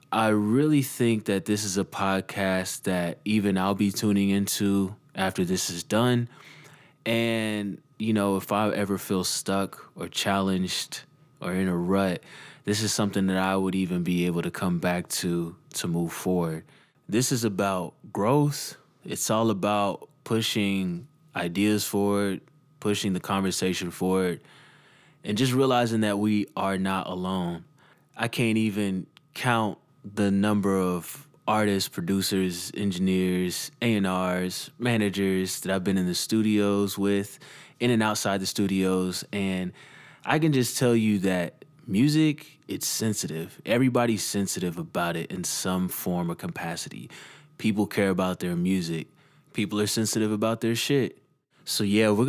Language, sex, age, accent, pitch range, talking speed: English, male, 20-39, American, 95-110 Hz, 145 wpm